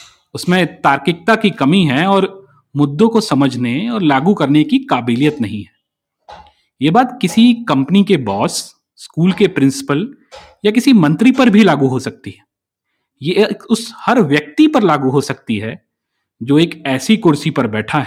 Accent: native